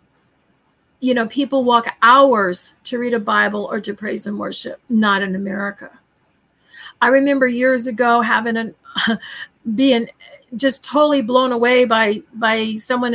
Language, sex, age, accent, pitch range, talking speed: English, female, 40-59, American, 220-265 Hz, 145 wpm